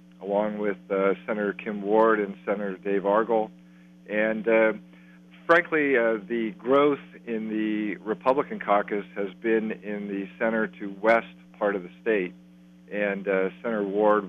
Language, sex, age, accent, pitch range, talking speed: English, male, 50-69, American, 90-110 Hz, 140 wpm